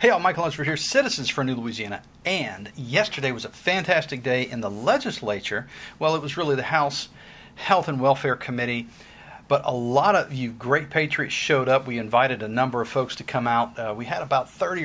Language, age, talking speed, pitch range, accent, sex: English, 40-59, 205 wpm, 120-150 Hz, American, male